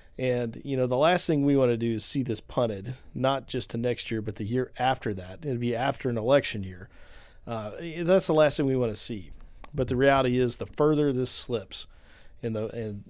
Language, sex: English, male